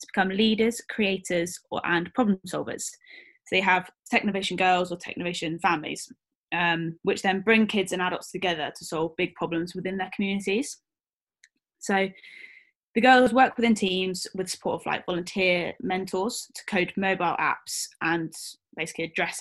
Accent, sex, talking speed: British, female, 155 wpm